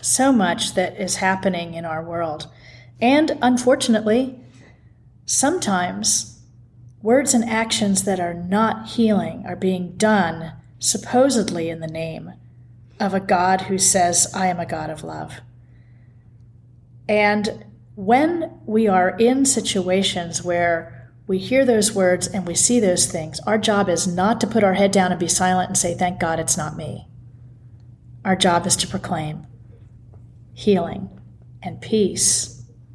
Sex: female